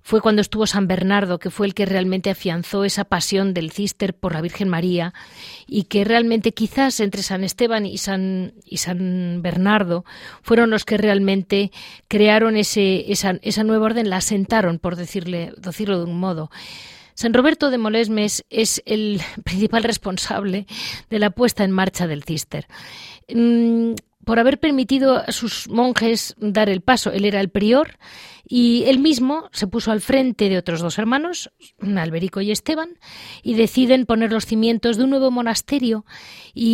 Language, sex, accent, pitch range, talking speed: Spanish, female, Spanish, 190-235 Hz, 160 wpm